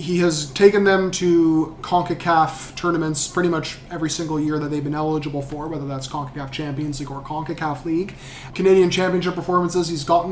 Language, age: English, 20-39